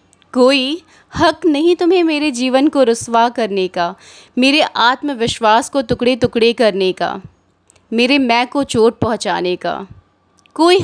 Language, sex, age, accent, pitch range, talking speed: Hindi, female, 20-39, native, 215-300 Hz, 135 wpm